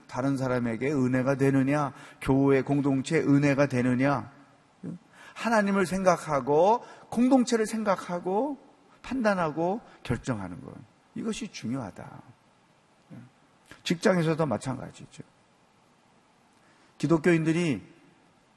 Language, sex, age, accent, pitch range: Korean, male, 40-59, native, 125-175 Hz